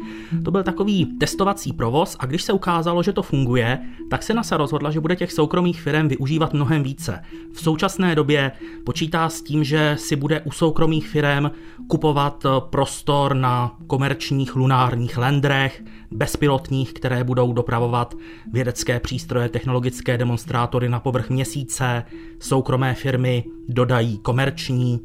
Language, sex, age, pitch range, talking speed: Czech, male, 30-49, 125-155 Hz, 135 wpm